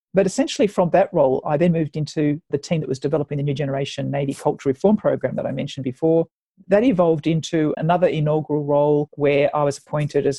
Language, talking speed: English, 210 wpm